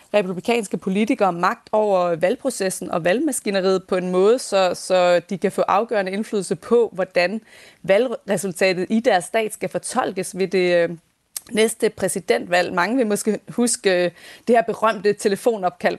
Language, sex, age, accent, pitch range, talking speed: Danish, female, 30-49, native, 180-215 Hz, 140 wpm